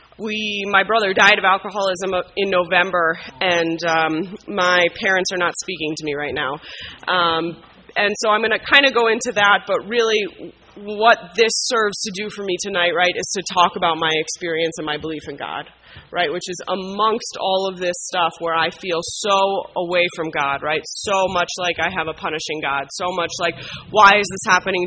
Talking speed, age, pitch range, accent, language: 200 wpm, 20-39, 170-200 Hz, American, English